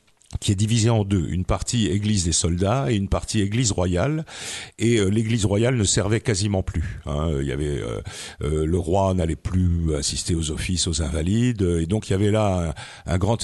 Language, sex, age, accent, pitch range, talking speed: French, male, 50-69, French, 90-120 Hz, 215 wpm